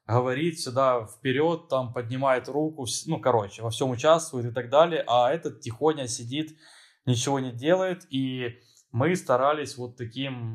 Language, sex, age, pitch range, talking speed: Russian, male, 20-39, 115-140 Hz, 150 wpm